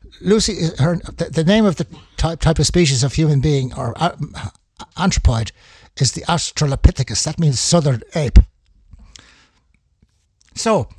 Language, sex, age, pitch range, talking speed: English, male, 60-79, 115-170 Hz, 125 wpm